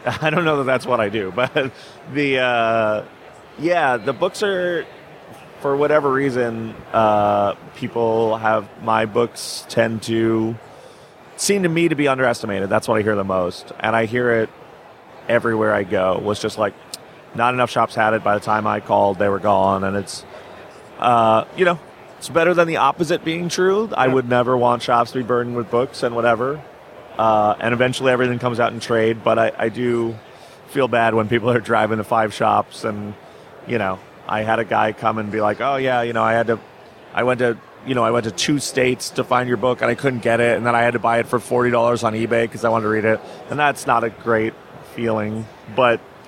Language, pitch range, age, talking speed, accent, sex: English, 110-125 Hz, 30-49, 215 wpm, American, male